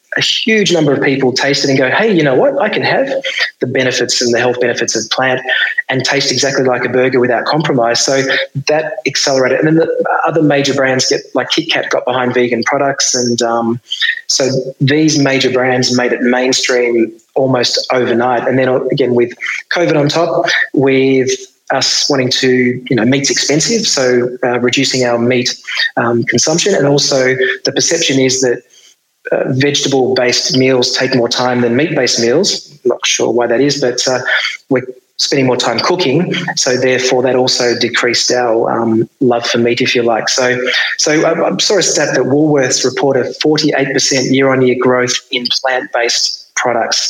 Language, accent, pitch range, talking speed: English, Australian, 125-140 Hz, 175 wpm